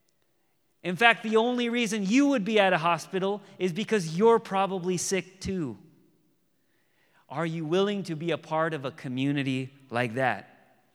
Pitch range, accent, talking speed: 145-185 Hz, American, 160 wpm